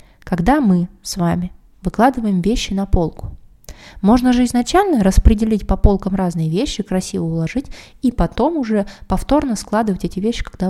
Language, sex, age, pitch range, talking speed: Russian, female, 20-39, 175-225 Hz, 145 wpm